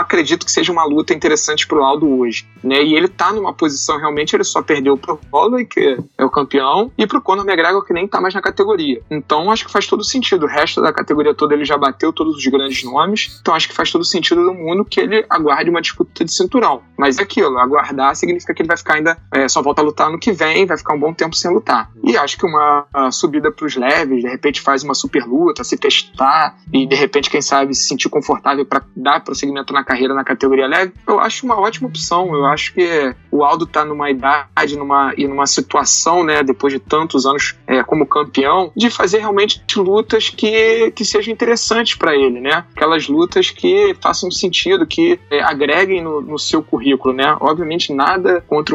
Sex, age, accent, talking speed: male, 20-39, Brazilian, 215 wpm